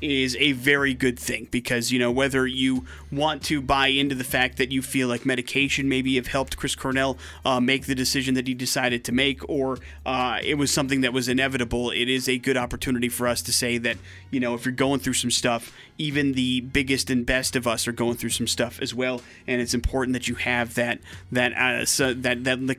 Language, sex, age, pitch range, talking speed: English, male, 30-49, 120-135 Hz, 230 wpm